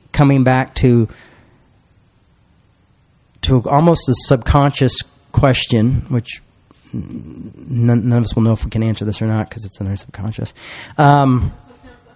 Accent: American